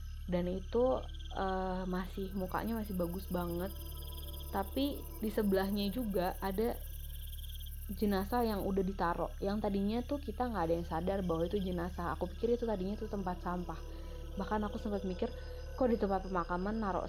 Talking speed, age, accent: 155 wpm, 20-39, native